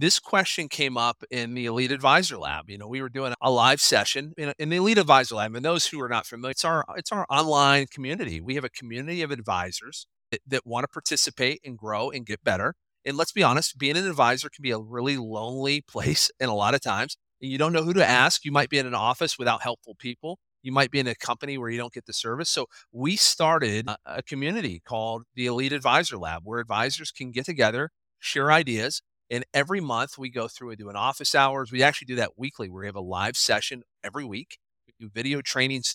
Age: 40-59